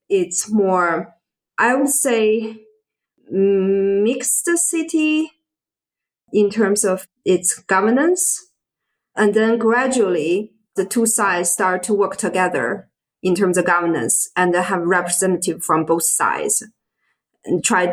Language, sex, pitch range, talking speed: English, female, 180-220 Hz, 115 wpm